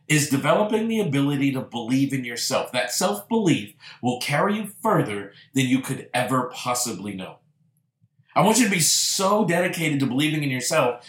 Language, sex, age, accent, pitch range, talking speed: English, male, 50-69, American, 135-170 Hz, 170 wpm